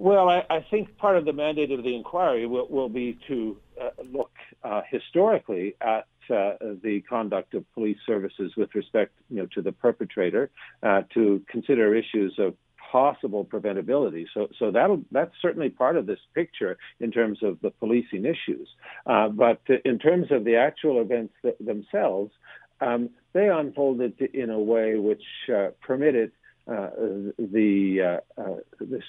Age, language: 60-79, English